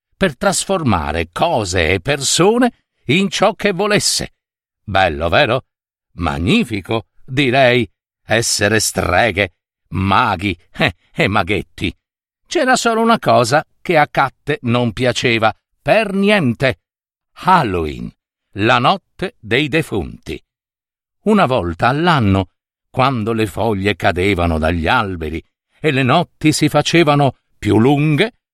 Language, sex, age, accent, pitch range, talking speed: Italian, male, 60-79, native, 105-165 Hz, 105 wpm